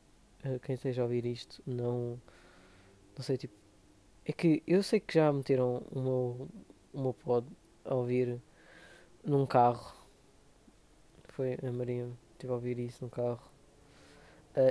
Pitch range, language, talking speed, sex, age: 125-140 Hz, Portuguese, 145 wpm, female, 20-39